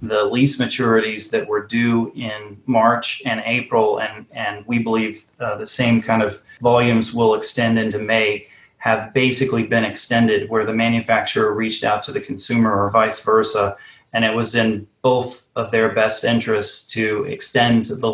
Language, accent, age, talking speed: English, American, 30-49, 170 wpm